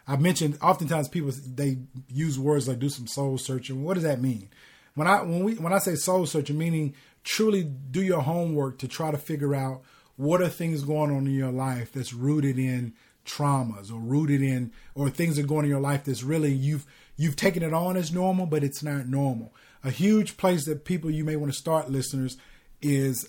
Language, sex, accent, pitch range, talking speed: English, male, American, 135-165 Hz, 210 wpm